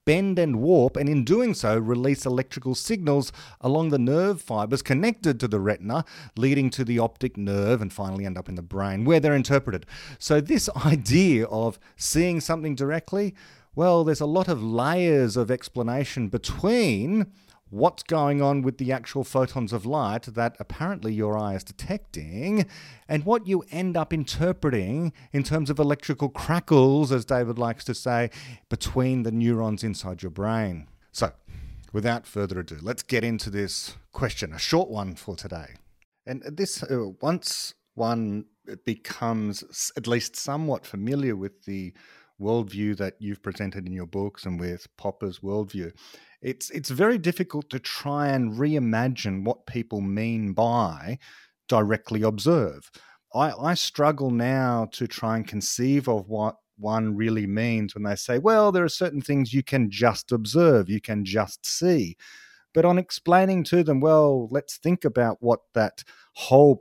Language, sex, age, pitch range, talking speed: English, male, 40-59, 110-150 Hz, 160 wpm